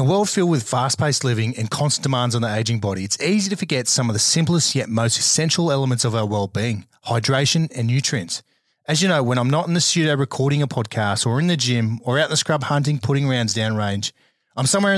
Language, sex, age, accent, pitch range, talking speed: English, male, 30-49, Australian, 120-155 Hz, 235 wpm